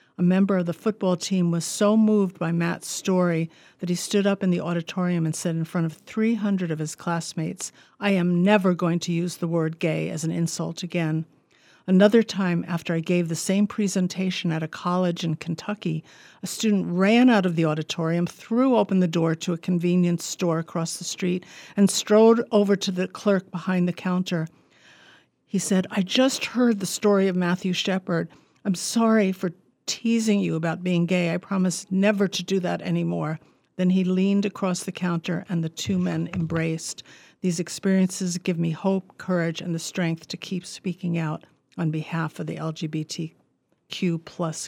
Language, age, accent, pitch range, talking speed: English, 50-69, American, 165-190 Hz, 185 wpm